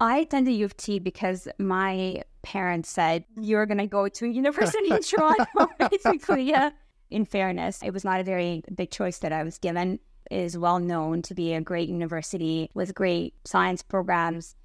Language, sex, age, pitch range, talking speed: English, female, 20-39, 175-205 Hz, 190 wpm